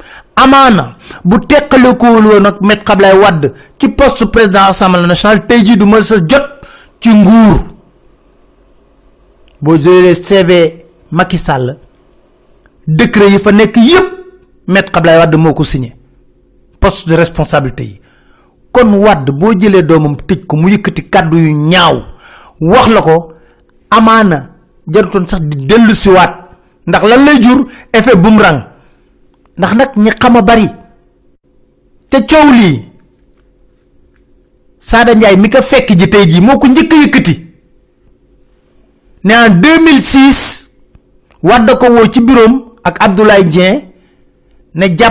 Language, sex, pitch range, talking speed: French, male, 160-230 Hz, 65 wpm